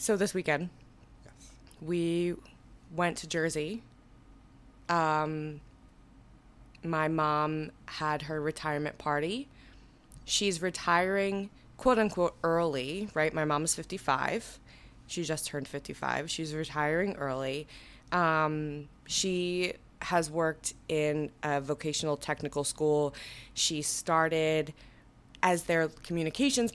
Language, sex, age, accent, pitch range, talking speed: English, female, 20-39, American, 150-175 Hz, 100 wpm